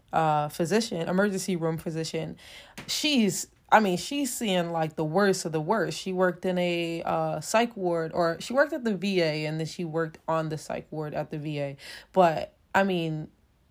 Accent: American